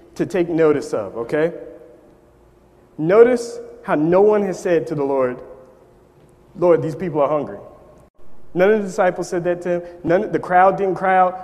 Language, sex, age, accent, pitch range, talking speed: English, male, 30-49, American, 155-195 Hz, 175 wpm